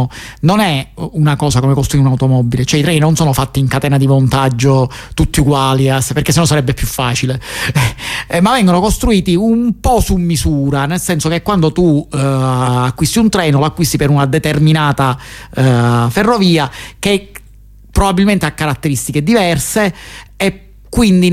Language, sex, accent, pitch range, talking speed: Italian, male, native, 135-165 Hz, 150 wpm